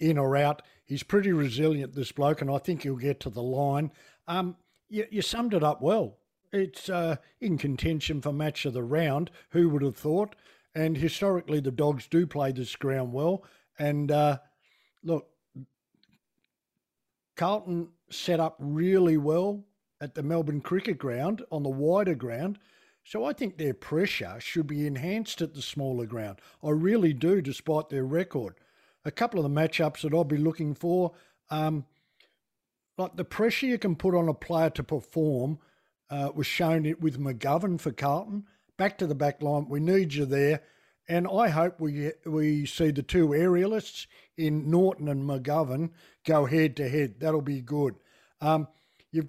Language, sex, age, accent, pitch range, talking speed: English, male, 50-69, Australian, 145-175 Hz, 170 wpm